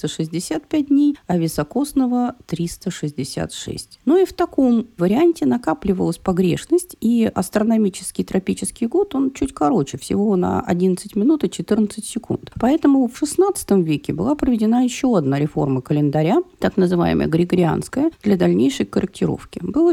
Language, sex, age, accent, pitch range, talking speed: Russian, female, 40-59, native, 165-245 Hz, 130 wpm